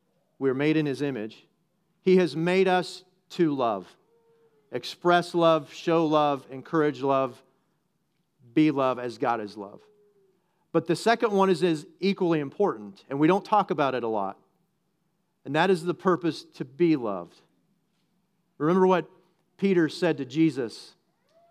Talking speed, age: 150 wpm, 40-59